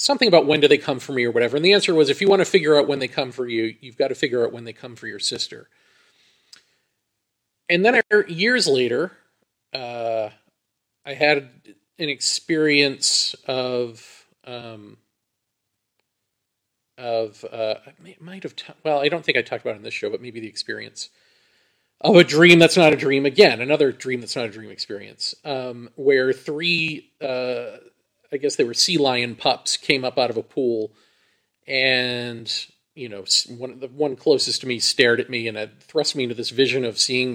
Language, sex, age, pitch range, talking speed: English, male, 40-59, 120-165 Hz, 195 wpm